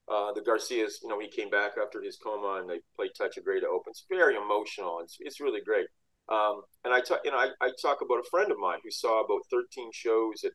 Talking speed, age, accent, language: 260 wpm, 30-49, American, English